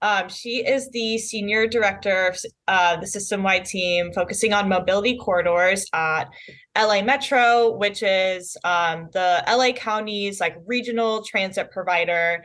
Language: English